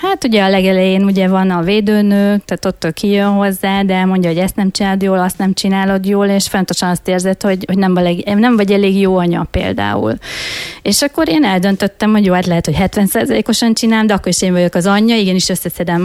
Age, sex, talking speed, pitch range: 30-49, female, 215 wpm, 185-210 Hz